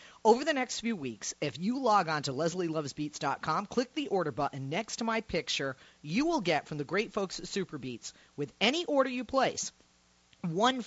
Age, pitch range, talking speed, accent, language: 40-59, 155-235 Hz, 195 wpm, American, English